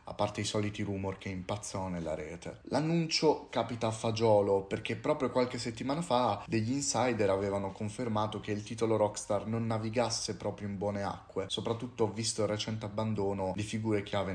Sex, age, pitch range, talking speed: male, 30-49, 100-125 Hz, 165 wpm